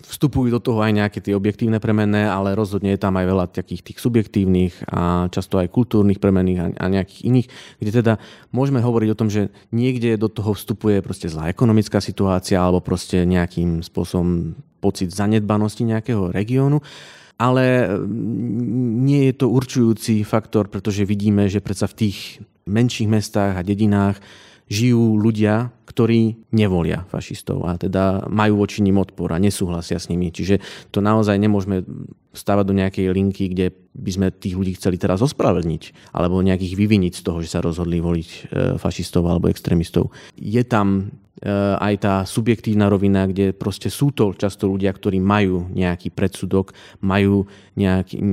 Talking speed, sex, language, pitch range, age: 155 wpm, male, Slovak, 95-110 Hz, 30-49